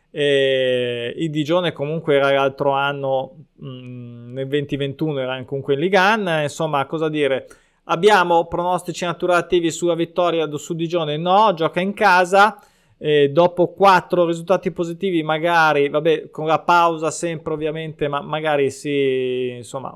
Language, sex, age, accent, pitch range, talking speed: Italian, male, 20-39, native, 140-170 Hz, 135 wpm